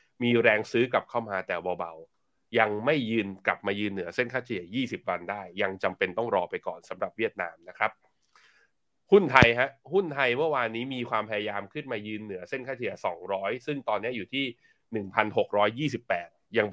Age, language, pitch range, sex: 20-39, Thai, 100-130 Hz, male